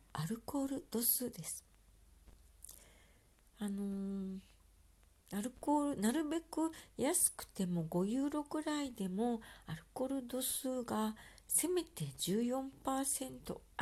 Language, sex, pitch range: Japanese, female, 155-230 Hz